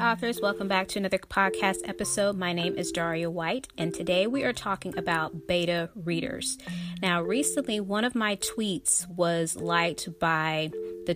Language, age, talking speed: English, 20-39, 160 wpm